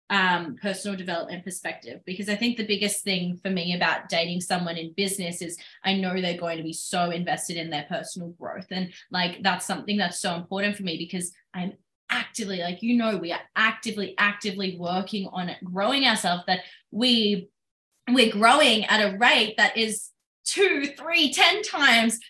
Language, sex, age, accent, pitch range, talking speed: English, female, 20-39, Australian, 180-225 Hz, 180 wpm